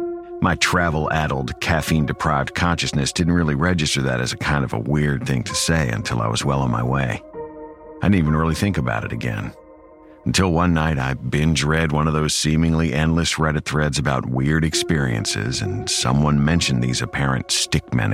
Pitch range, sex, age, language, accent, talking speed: 70-100 Hz, male, 50-69, English, American, 175 wpm